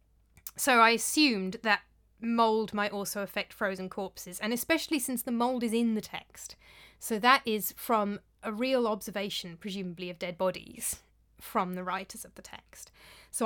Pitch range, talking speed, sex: 190-230 Hz, 165 wpm, female